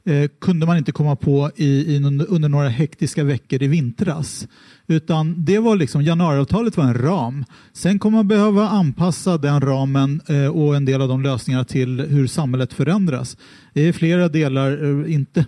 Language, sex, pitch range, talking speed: English, male, 135-175 Hz, 175 wpm